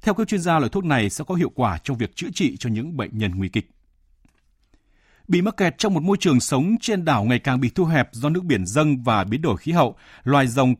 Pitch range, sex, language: 105-150 Hz, male, Vietnamese